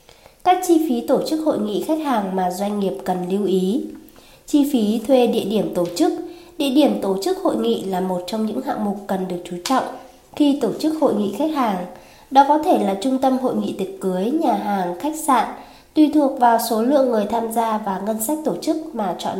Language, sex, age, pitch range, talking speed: Vietnamese, female, 20-39, 195-285 Hz, 230 wpm